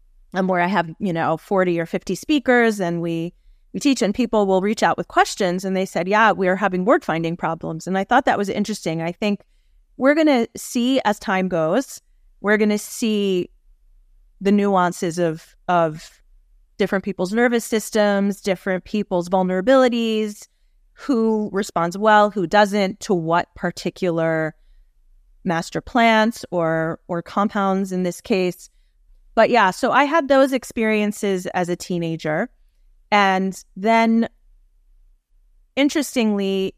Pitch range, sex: 175-220 Hz, female